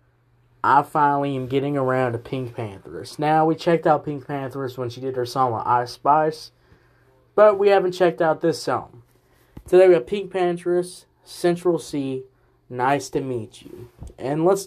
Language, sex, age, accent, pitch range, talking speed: English, male, 20-39, American, 125-160 Hz, 170 wpm